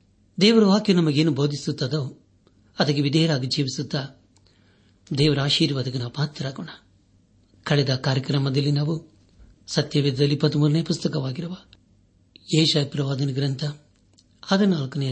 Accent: native